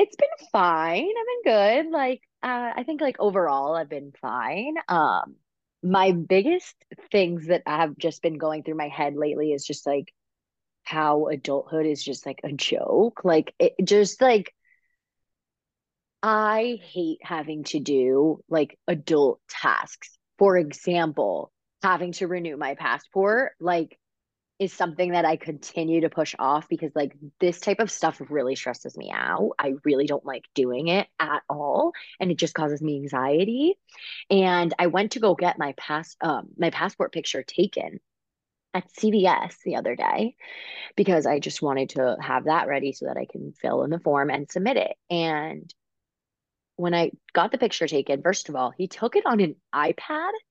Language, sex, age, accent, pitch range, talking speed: English, female, 20-39, American, 150-205 Hz, 170 wpm